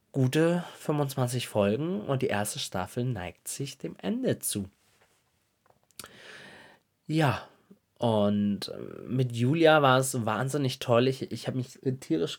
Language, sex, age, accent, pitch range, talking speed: German, male, 20-39, German, 110-150 Hz, 120 wpm